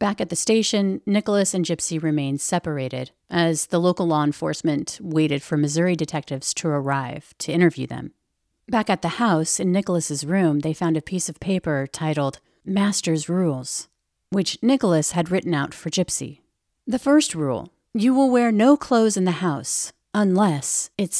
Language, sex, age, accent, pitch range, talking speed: English, female, 40-59, American, 155-210 Hz, 165 wpm